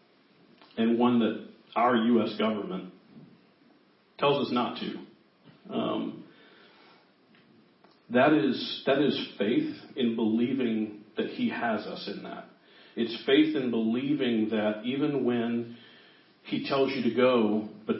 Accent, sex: American, male